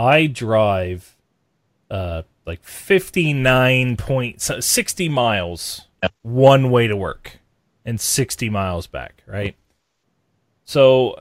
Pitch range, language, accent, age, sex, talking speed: 95-125 Hz, English, American, 30-49, male, 85 wpm